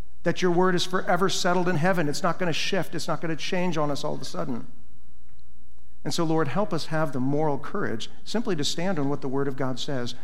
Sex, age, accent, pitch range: male, 50-69, American, 120-155 Hz